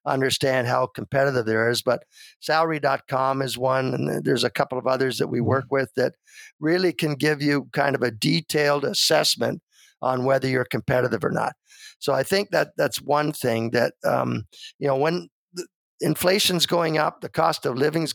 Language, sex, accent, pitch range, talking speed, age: English, male, American, 130-165 Hz, 180 wpm, 50-69